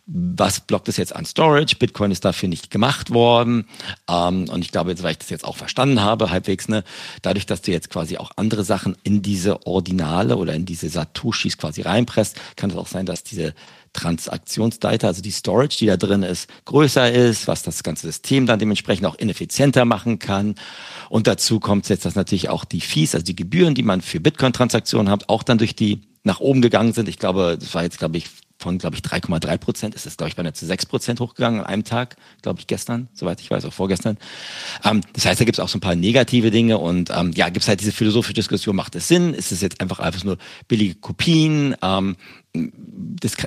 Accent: German